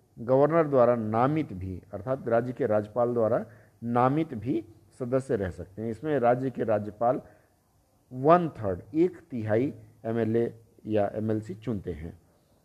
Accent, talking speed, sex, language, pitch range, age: native, 135 wpm, male, Hindi, 105-145 Hz, 50-69